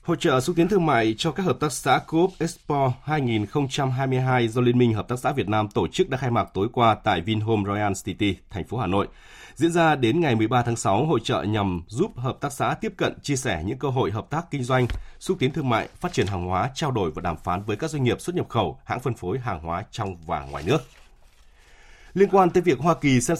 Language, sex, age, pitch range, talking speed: Vietnamese, male, 20-39, 105-145 Hz, 250 wpm